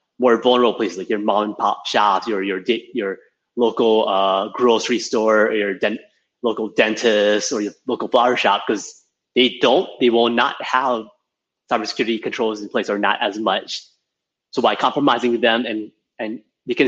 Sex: male